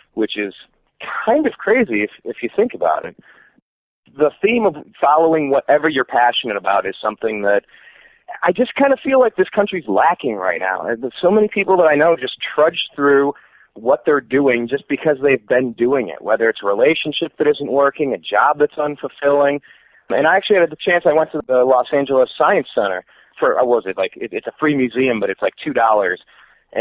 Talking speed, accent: 205 wpm, American